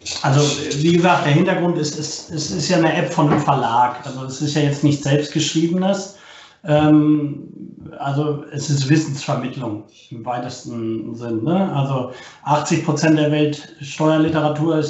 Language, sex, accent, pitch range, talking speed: German, male, German, 145-170 Hz, 155 wpm